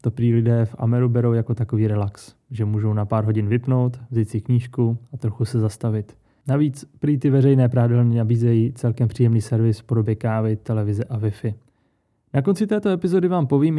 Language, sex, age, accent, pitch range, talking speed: Czech, male, 20-39, native, 115-135 Hz, 185 wpm